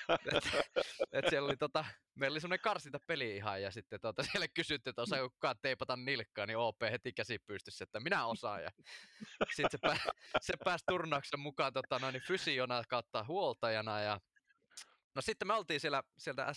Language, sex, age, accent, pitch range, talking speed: Finnish, male, 20-39, native, 110-145 Hz, 165 wpm